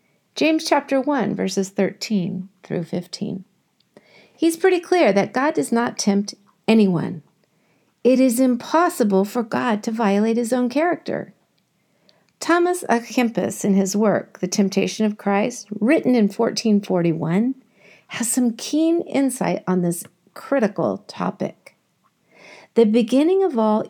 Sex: female